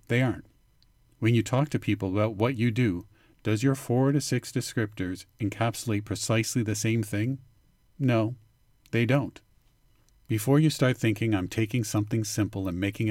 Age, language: 40-59, English